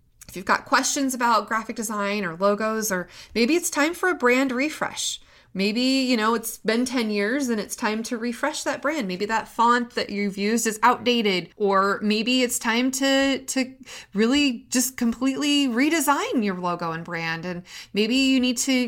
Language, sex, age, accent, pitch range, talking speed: English, female, 30-49, American, 190-235 Hz, 185 wpm